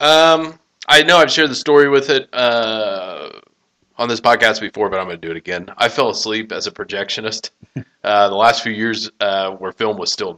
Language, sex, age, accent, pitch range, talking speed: English, male, 30-49, American, 95-140 Hz, 215 wpm